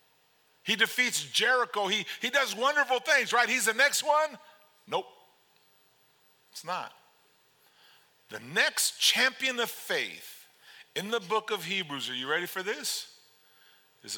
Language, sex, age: English, male, 50-69